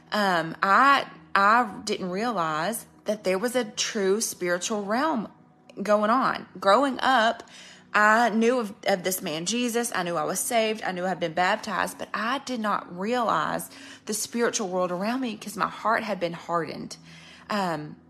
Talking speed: 165 wpm